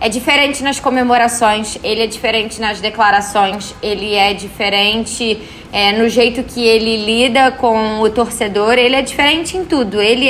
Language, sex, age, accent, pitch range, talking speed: Portuguese, female, 10-29, Brazilian, 220-270 Hz, 155 wpm